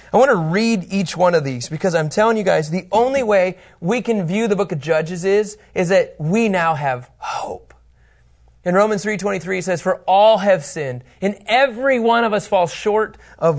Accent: American